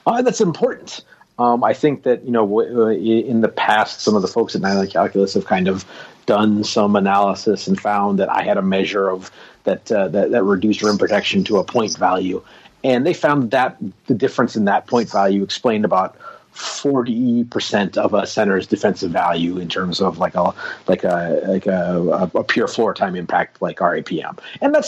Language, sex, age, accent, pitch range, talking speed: English, male, 30-49, American, 100-135 Hz, 210 wpm